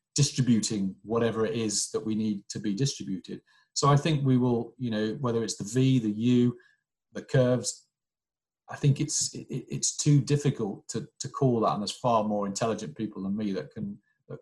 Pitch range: 110-130 Hz